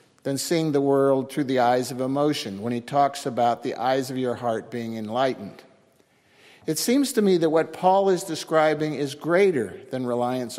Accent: American